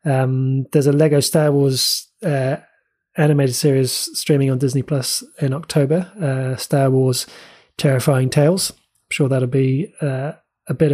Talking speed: 150 wpm